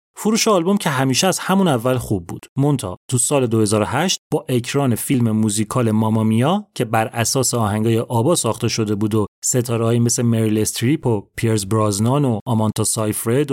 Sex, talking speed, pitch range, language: male, 165 wpm, 110-155 Hz, Persian